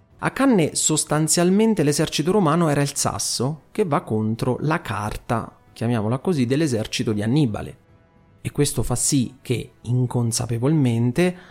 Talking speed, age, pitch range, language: 125 wpm, 30-49, 120-175 Hz, Italian